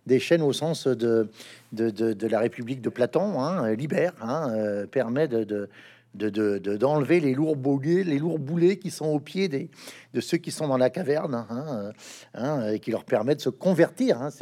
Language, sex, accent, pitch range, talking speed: French, male, French, 130-185 Hz, 215 wpm